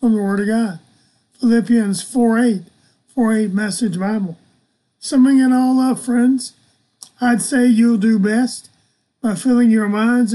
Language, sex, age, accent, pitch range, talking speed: English, male, 40-59, American, 210-240 Hz, 160 wpm